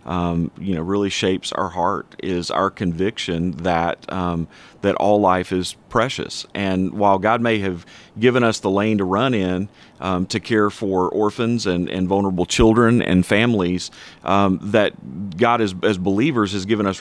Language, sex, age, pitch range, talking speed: English, male, 30-49, 95-120 Hz, 175 wpm